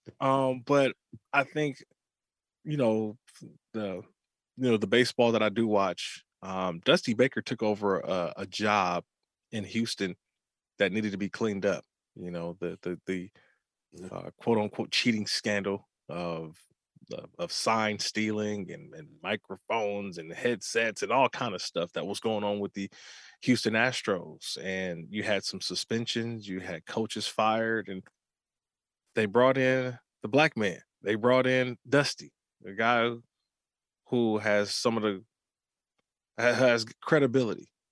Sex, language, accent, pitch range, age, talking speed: male, English, American, 100-120 Hz, 20-39, 145 wpm